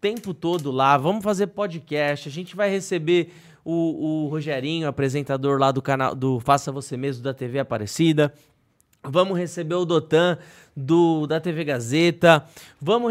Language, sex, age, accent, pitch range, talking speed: Portuguese, male, 20-39, Brazilian, 150-200 Hz, 150 wpm